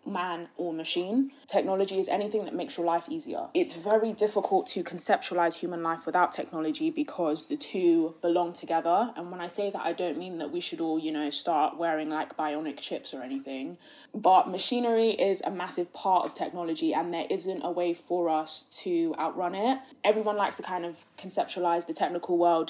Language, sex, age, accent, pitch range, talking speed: English, female, 20-39, British, 170-225 Hz, 195 wpm